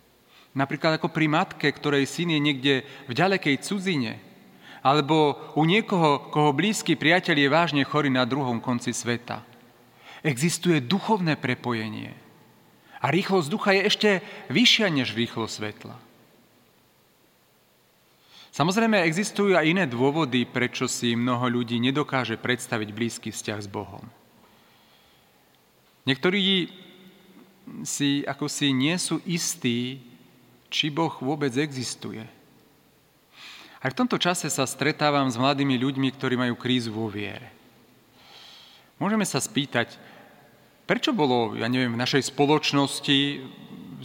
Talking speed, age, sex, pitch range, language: 115 wpm, 40-59, male, 125-155 Hz, Slovak